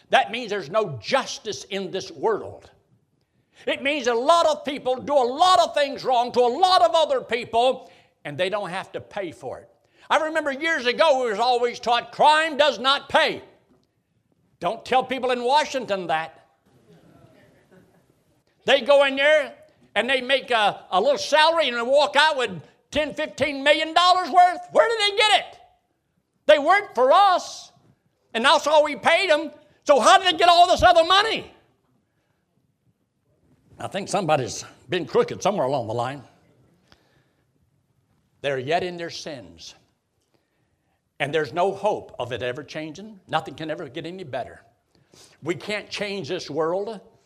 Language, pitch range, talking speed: English, 190-310 Hz, 165 wpm